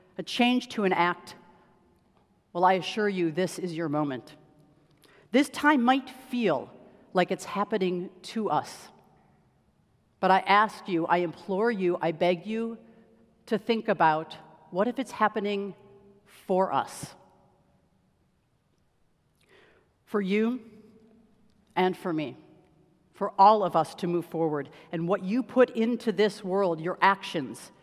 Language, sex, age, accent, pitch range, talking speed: English, female, 50-69, American, 175-225 Hz, 135 wpm